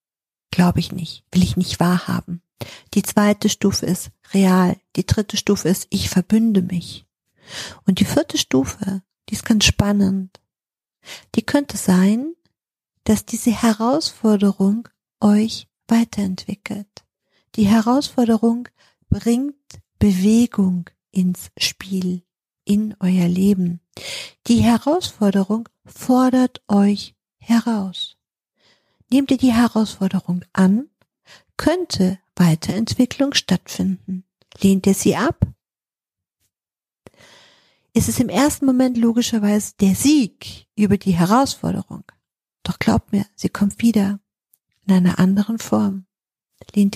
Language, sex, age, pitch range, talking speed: German, female, 50-69, 185-230 Hz, 105 wpm